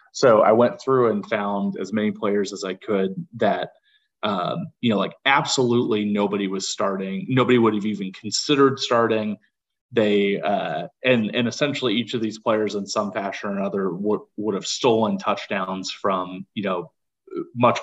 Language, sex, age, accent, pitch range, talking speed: English, male, 30-49, American, 105-125 Hz, 170 wpm